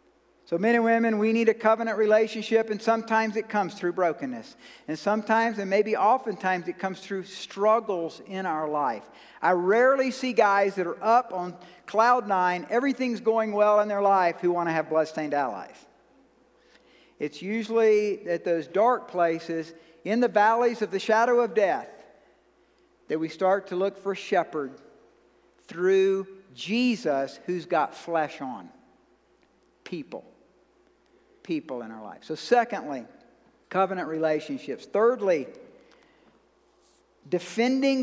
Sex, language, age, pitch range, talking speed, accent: male, English, 50-69, 170-225 Hz, 140 wpm, American